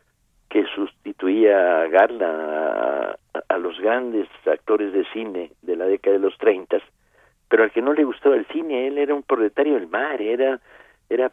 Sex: male